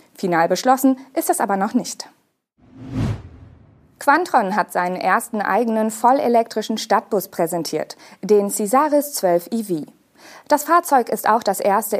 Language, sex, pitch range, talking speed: German, female, 185-265 Hz, 125 wpm